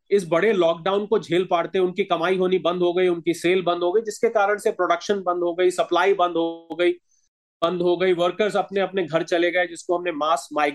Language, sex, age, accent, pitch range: Hindi, male, 30-49, native, 175-230 Hz